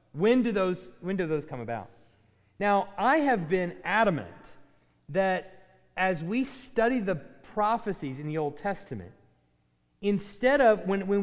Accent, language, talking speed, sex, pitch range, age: American, English, 145 wpm, male, 170-230 Hz, 30-49